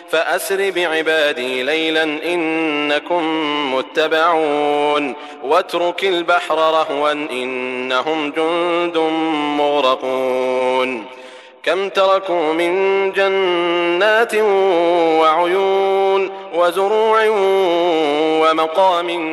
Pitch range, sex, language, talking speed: 145-175 Hz, male, Arabic, 55 wpm